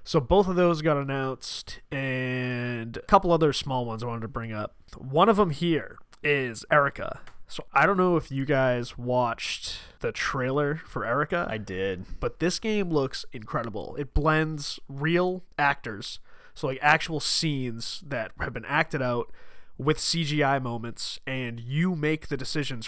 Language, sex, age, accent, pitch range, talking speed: English, male, 20-39, American, 120-150 Hz, 165 wpm